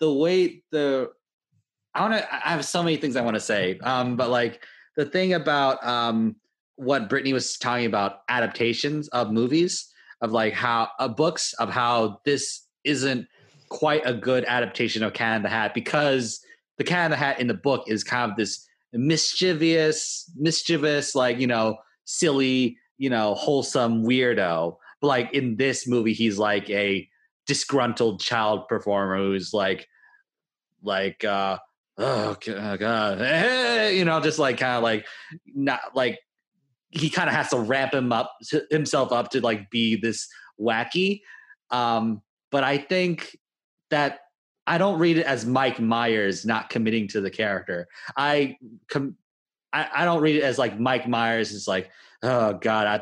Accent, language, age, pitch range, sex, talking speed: American, English, 30-49, 115-150 Hz, male, 165 wpm